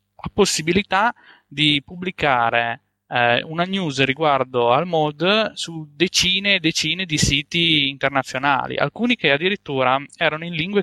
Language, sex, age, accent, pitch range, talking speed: Italian, male, 10-29, native, 135-170 Hz, 120 wpm